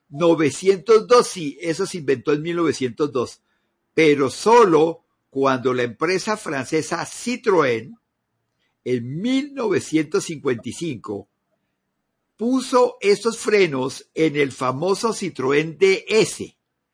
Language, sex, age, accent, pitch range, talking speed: Spanish, male, 50-69, Mexican, 155-225 Hz, 85 wpm